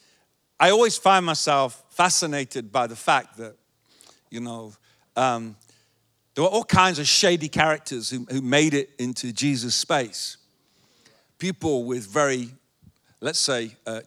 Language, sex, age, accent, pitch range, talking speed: English, male, 50-69, British, 125-190 Hz, 135 wpm